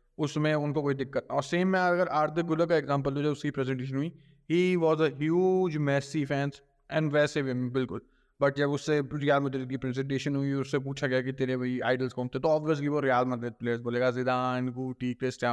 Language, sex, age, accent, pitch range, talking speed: Hindi, male, 20-39, native, 135-160 Hz, 210 wpm